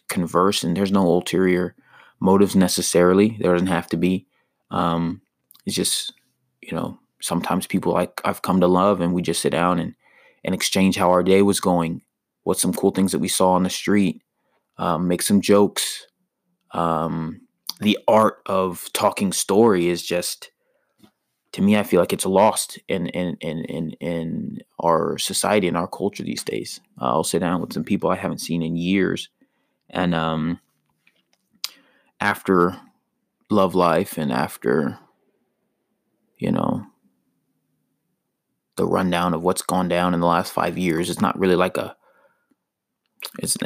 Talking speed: 160 wpm